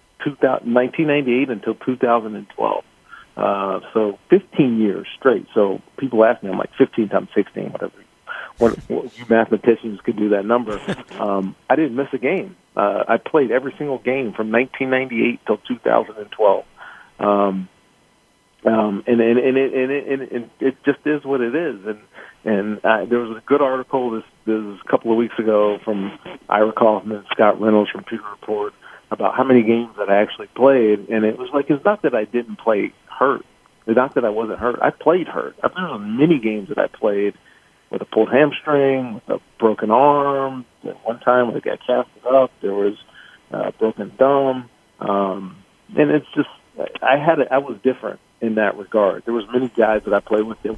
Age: 40-59